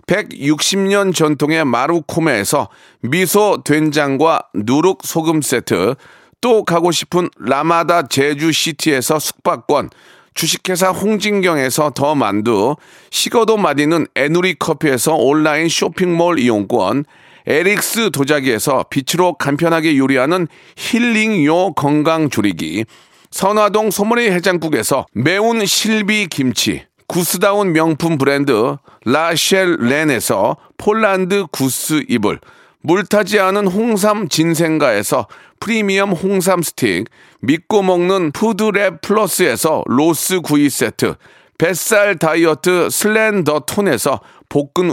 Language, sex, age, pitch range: Korean, male, 40-59, 150-200 Hz